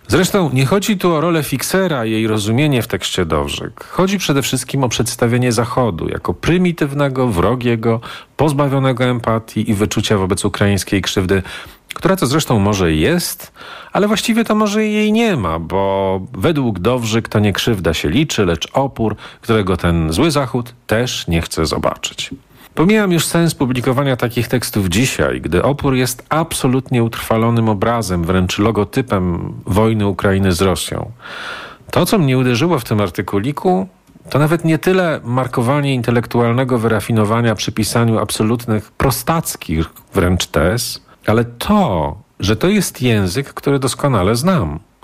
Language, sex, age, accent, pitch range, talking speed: Polish, male, 40-59, native, 105-145 Hz, 145 wpm